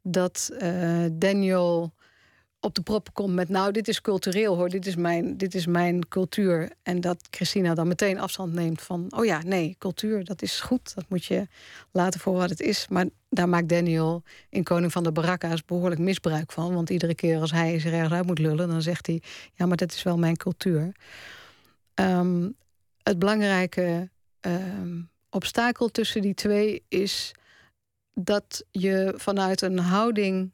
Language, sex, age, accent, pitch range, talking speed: Dutch, female, 50-69, Dutch, 170-195 Hz, 165 wpm